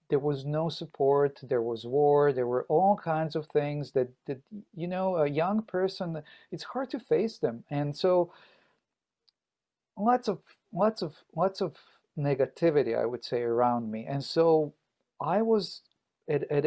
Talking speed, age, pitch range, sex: 160 wpm, 40-59, 140-185 Hz, male